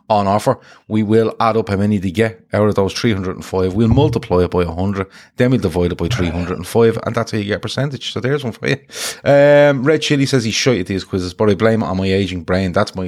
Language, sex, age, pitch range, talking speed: English, male, 30-49, 90-115 Hz, 255 wpm